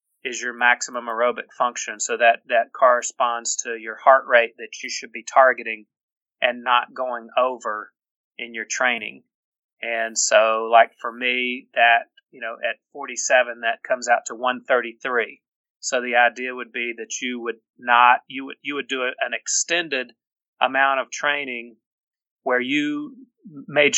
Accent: American